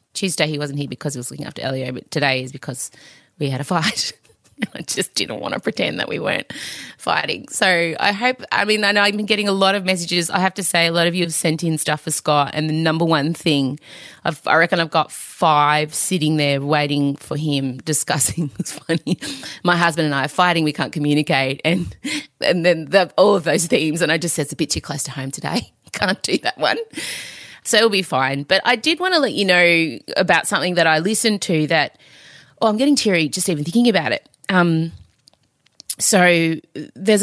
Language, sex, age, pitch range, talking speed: English, female, 20-39, 145-185 Hz, 225 wpm